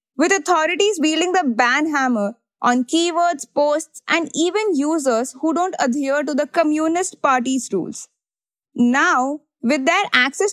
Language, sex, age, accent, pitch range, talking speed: English, female, 20-39, Indian, 255-335 Hz, 135 wpm